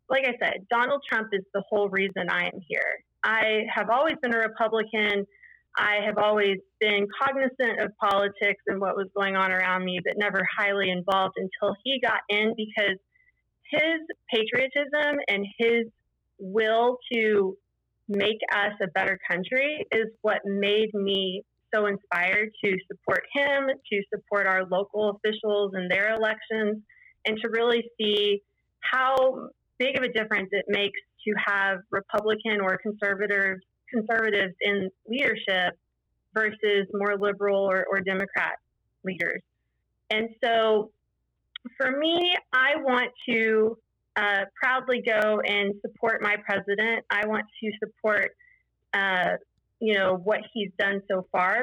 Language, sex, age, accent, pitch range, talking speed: English, female, 30-49, American, 200-230 Hz, 140 wpm